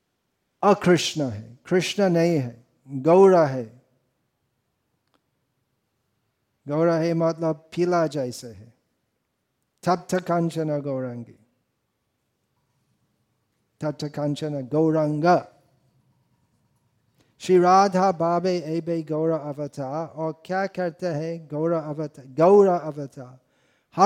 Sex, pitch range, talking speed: male, 135-175 Hz, 65 wpm